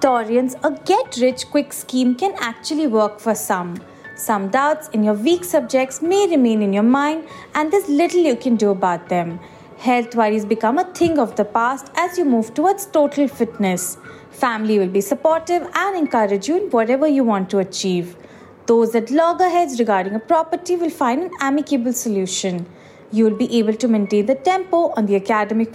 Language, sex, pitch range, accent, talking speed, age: English, female, 205-315 Hz, Indian, 175 wpm, 30-49